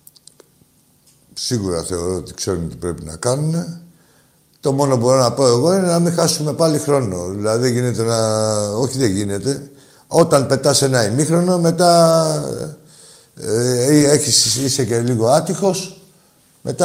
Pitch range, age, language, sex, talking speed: 105-145 Hz, 60-79, Greek, male, 140 wpm